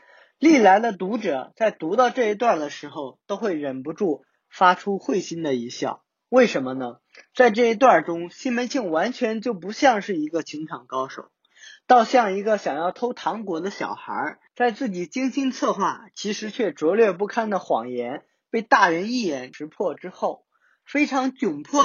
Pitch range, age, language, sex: 160-250 Hz, 20-39, Chinese, male